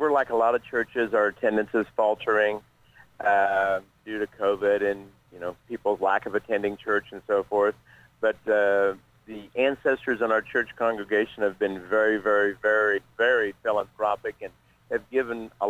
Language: English